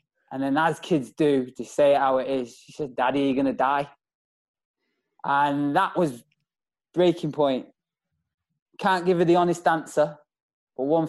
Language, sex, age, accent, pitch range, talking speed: English, male, 20-39, British, 125-150 Hz, 160 wpm